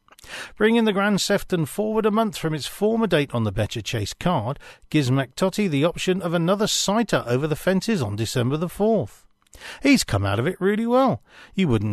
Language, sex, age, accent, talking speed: English, male, 40-59, British, 195 wpm